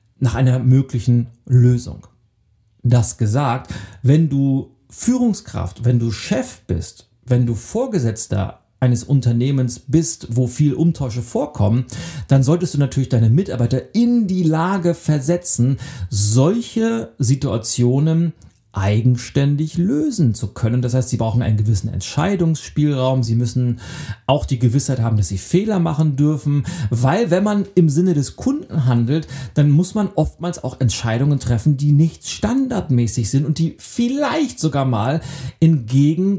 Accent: German